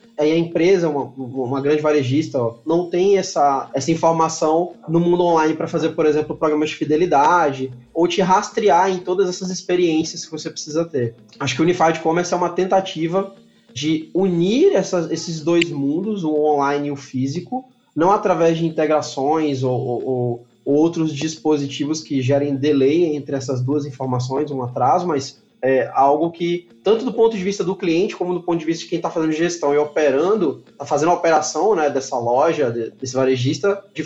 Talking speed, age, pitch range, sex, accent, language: 185 wpm, 20-39, 145-185 Hz, male, Brazilian, Portuguese